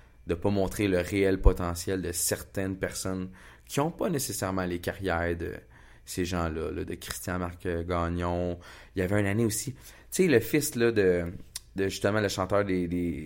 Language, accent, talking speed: French, Canadian, 185 wpm